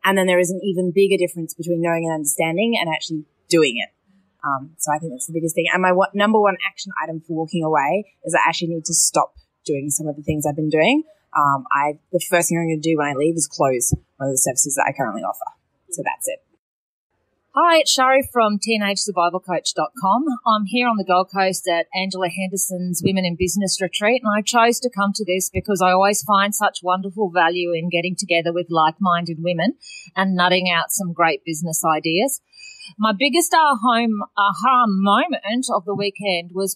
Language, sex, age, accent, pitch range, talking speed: English, female, 20-39, Australian, 165-205 Hz, 205 wpm